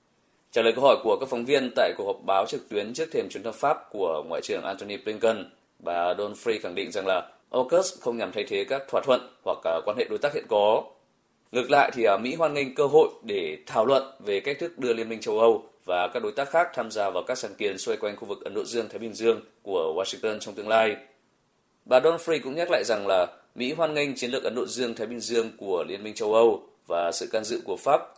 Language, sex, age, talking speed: Vietnamese, male, 20-39, 260 wpm